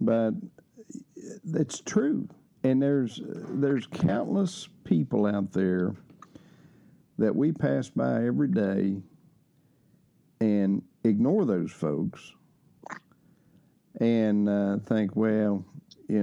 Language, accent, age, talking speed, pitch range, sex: English, American, 50-69, 90 wpm, 100-155 Hz, male